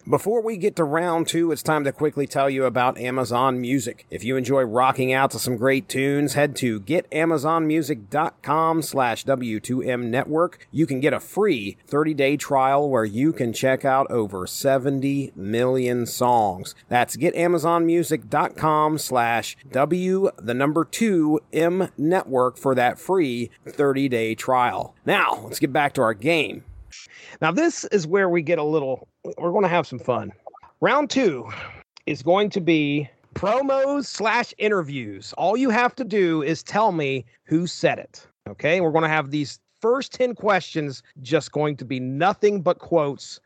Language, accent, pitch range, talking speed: English, American, 130-180 Hz, 160 wpm